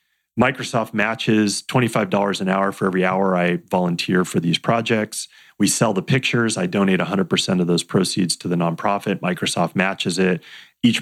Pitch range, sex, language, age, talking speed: 90-115 Hz, male, English, 30-49, 165 wpm